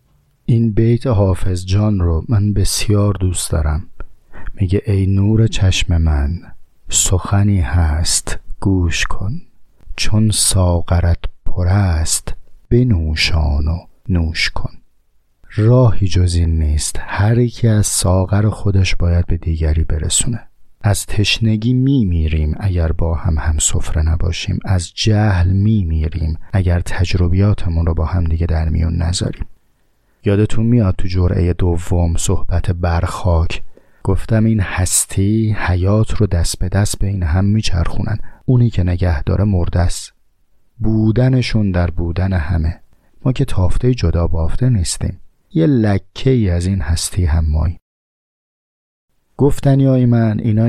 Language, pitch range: Persian, 85-105 Hz